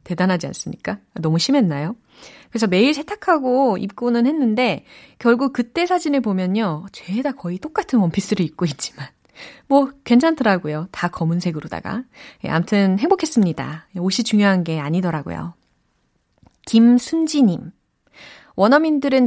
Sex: female